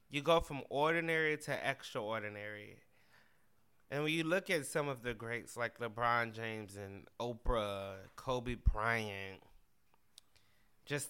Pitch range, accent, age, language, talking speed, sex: 110-140 Hz, American, 20-39, English, 125 wpm, male